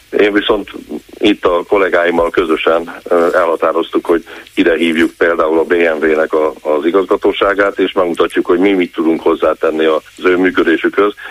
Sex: male